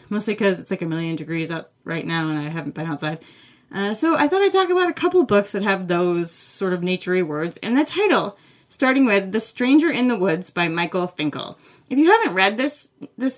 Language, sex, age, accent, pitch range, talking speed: English, female, 20-39, American, 175-275 Hz, 235 wpm